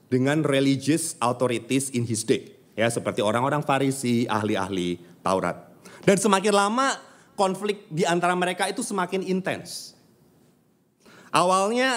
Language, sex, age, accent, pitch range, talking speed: Indonesian, male, 30-49, native, 130-195 Hz, 115 wpm